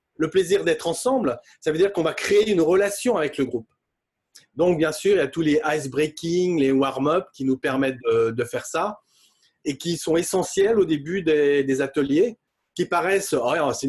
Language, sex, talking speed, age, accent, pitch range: French, male, 200 wpm, 30-49, French, 150-215 Hz